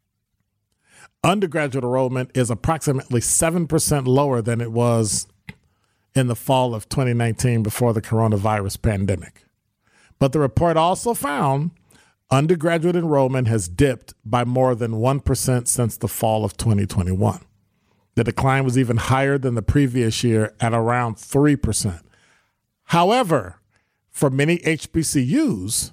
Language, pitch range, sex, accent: English, 115-145 Hz, male, American